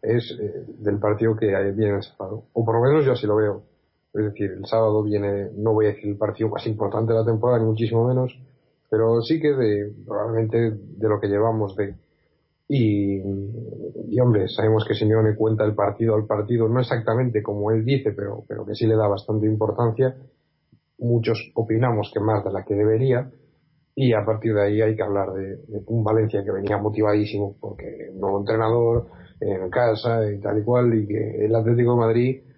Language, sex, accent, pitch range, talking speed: Spanish, male, Spanish, 105-120 Hz, 200 wpm